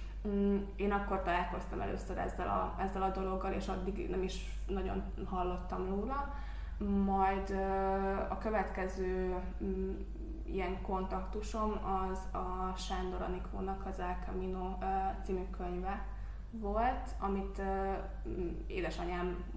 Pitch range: 185-200 Hz